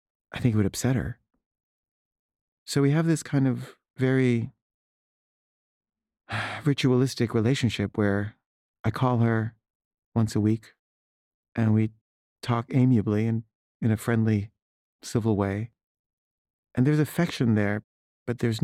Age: 40-59